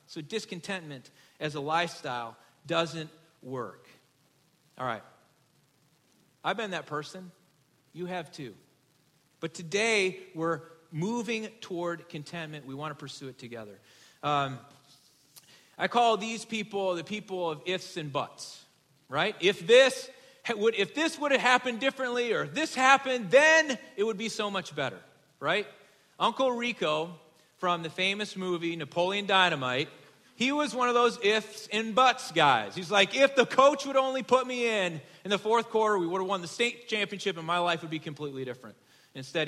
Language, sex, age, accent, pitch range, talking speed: English, male, 40-59, American, 150-215 Hz, 155 wpm